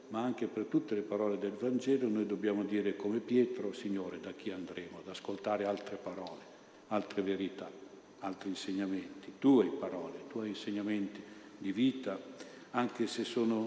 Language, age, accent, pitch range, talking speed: Italian, 60-79, native, 100-120 Hz, 155 wpm